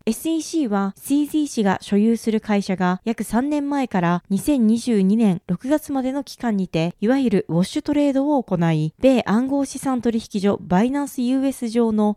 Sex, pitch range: female, 195-270 Hz